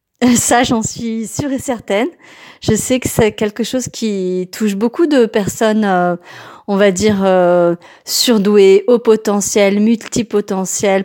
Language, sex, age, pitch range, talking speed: French, female, 30-49, 190-235 Hz, 140 wpm